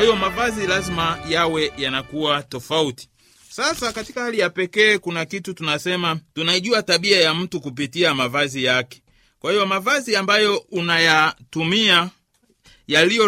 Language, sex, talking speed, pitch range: Swahili, male, 125 wpm, 145-190 Hz